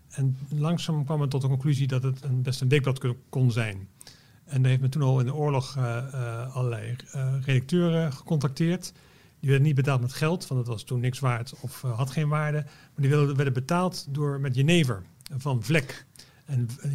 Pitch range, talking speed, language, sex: 130-150 Hz, 210 wpm, Dutch, male